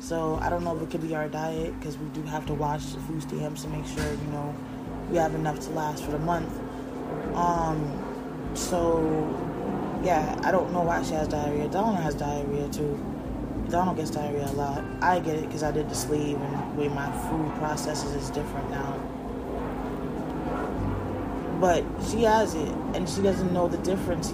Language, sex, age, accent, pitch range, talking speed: English, female, 20-39, American, 150-205 Hz, 190 wpm